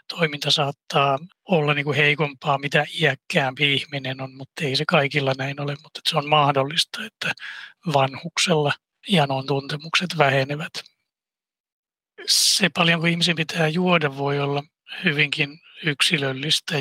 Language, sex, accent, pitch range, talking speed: Finnish, male, native, 140-165 Hz, 125 wpm